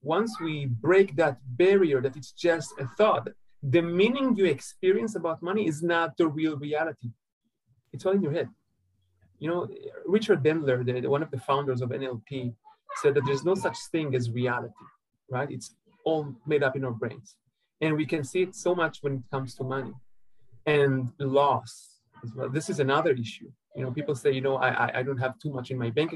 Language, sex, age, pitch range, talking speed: English, male, 40-59, 130-170 Hz, 200 wpm